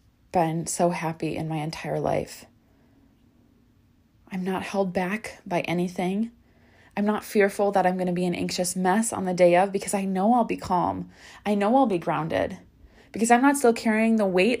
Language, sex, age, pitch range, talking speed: English, female, 20-39, 160-220 Hz, 190 wpm